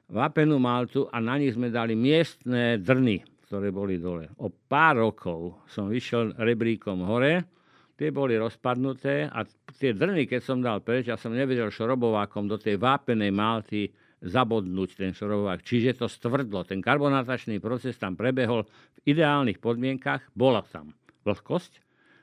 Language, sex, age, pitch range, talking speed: Slovak, male, 50-69, 110-145 Hz, 145 wpm